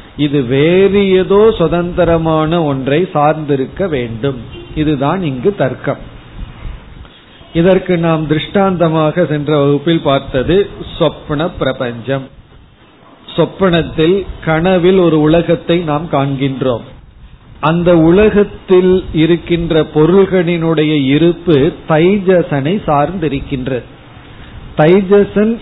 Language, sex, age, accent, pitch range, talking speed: Tamil, male, 40-59, native, 145-175 Hz, 75 wpm